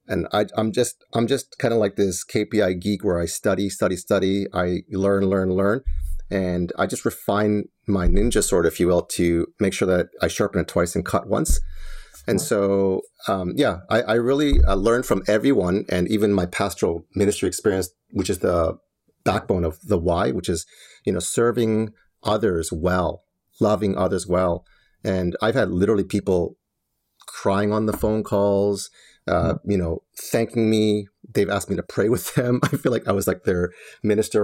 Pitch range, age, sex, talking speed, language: 90-105 Hz, 30-49, male, 185 wpm, English